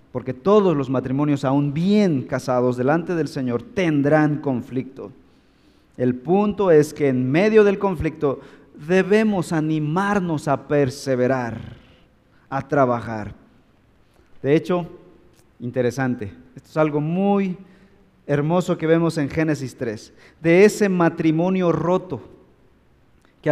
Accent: Mexican